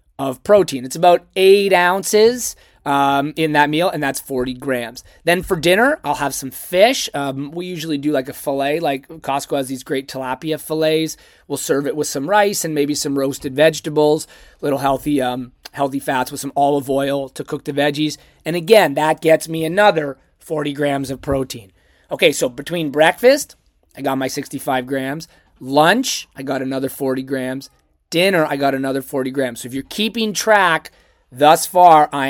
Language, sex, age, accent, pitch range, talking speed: English, male, 30-49, American, 135-165 Hz, 180 wpm